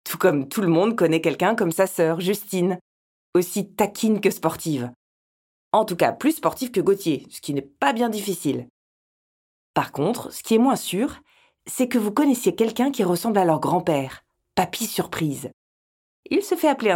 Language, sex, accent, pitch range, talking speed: French, female, French, 160-235 Hz, 180 wpm